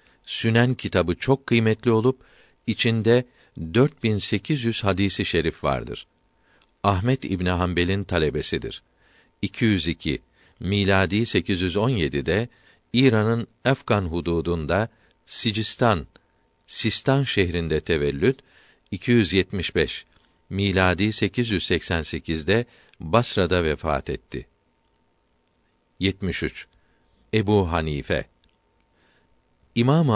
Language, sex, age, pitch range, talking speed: Turkish, male, 50-69, 85-115 Hz, 85 wpm